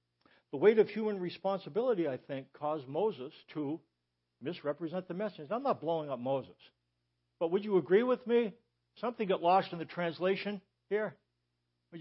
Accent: American